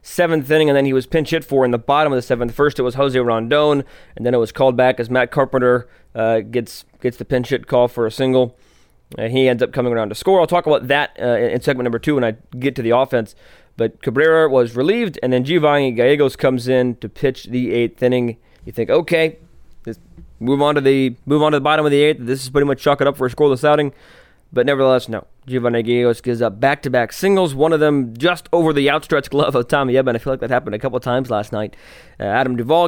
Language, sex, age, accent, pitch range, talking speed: English, male, 20-39, American, 120-145 Hz, 250 wpm